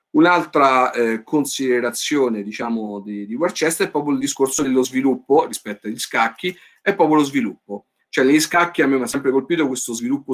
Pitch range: 125-160 Hz